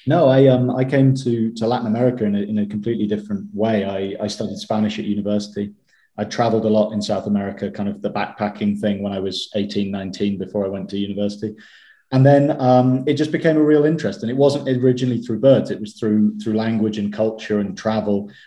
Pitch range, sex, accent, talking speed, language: 105-130 Hz, male, British, 220 wpm, English